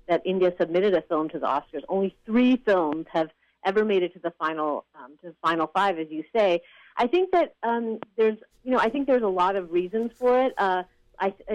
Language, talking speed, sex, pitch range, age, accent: English, 225 wpm, female, 170-210 Hz, 30-49, American